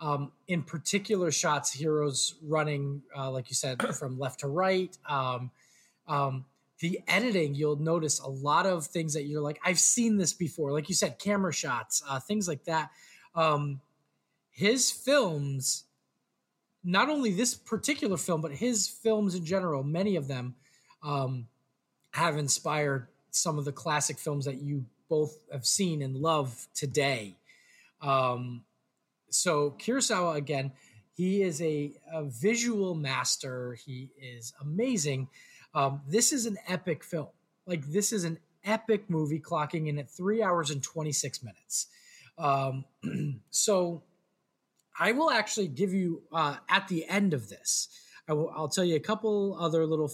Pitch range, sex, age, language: 140-185 Hz, male, 20-39, English